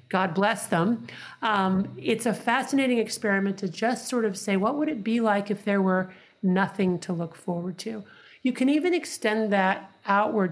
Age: 40-59